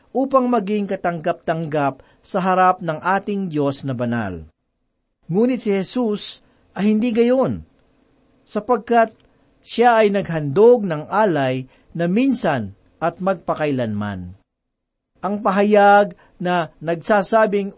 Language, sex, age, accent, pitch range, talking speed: Filipino, male, 50-69, native, 160-215 Hz, 100 wpm